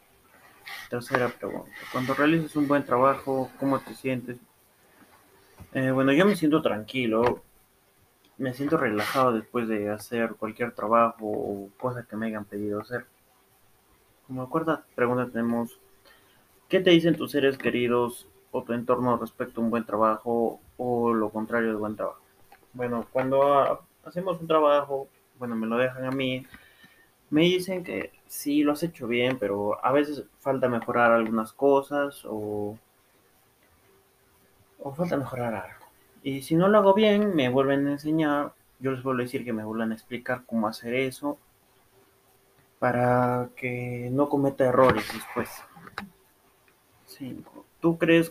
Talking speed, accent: 145 wpm, Mexican